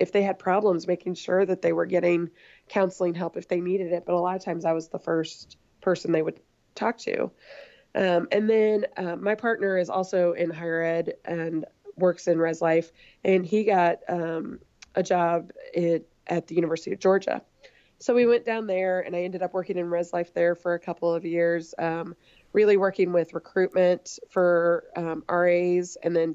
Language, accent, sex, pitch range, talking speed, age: English, American, female, 165-185 Hz, 195 wpm, 20-39